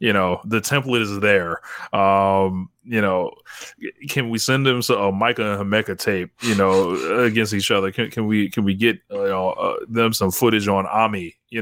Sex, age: male, 20-39